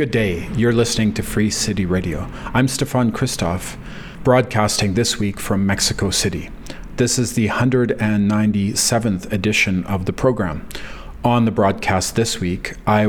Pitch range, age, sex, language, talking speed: 100-115 Hz, 40-59, male, English, 140 wpm